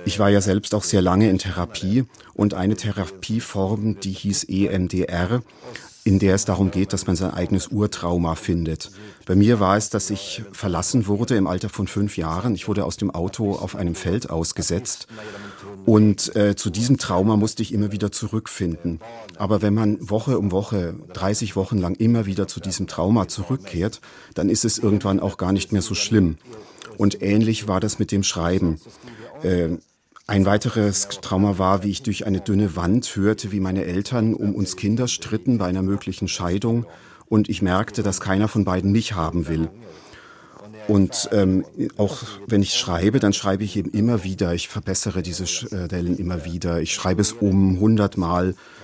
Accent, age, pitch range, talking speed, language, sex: German, 40-59, 95-105 Hz, 180 wpm, German, male